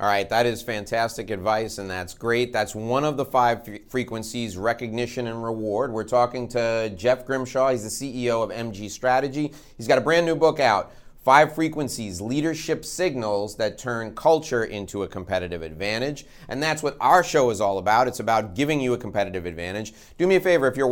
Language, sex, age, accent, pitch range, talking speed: English, male, 30-49, American, 115-155 Hz, 195 wpm